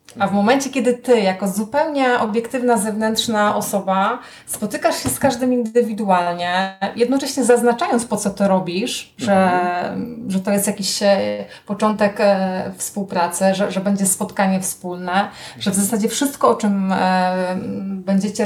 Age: 30-49